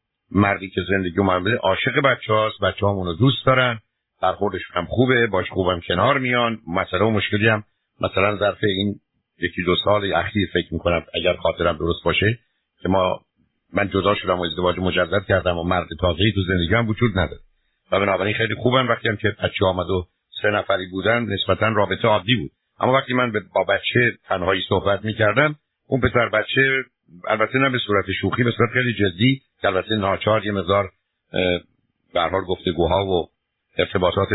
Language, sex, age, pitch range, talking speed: Persian, male, 60-79, 95-120 Hz, 160 wpm